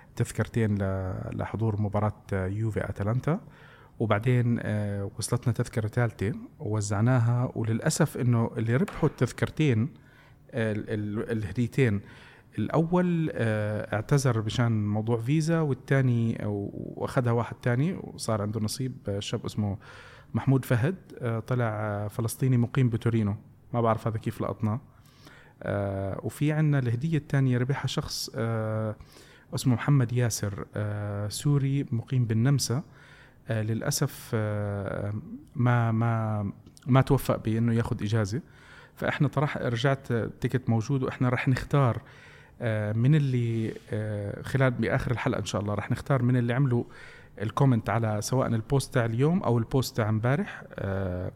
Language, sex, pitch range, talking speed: Arabic, male, 110-135 Hz, 110 wpm